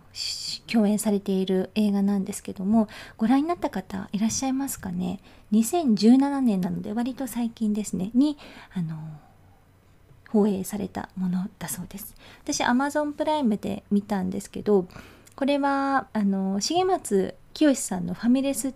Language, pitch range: Japanese, 195-250 Hz